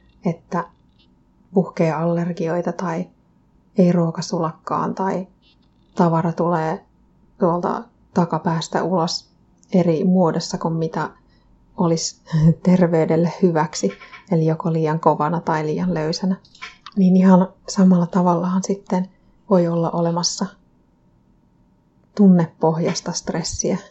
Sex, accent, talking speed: female, native, 90 wpm